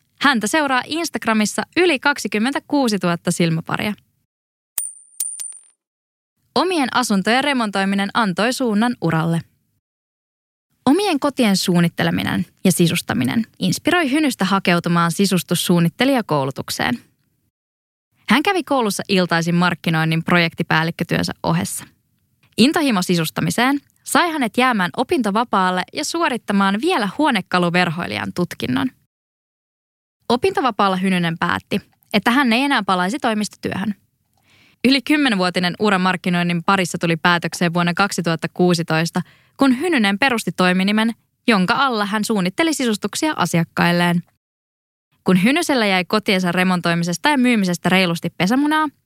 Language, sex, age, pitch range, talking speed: English, female, 20-39, 175-245 Hz, 95 wpm